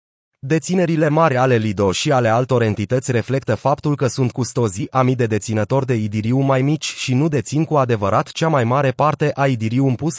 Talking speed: 185 wpm